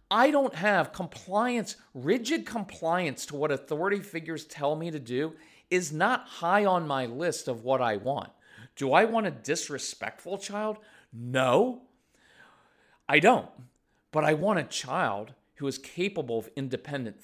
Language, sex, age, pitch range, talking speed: English, male, 40-59, 135-195 Hz, 150 wpm